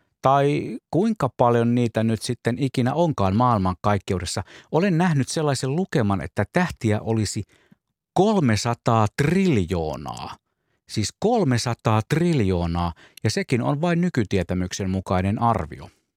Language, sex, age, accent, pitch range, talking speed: Finnish, male, 50-69, native, 95-140 Hz, 105 wpm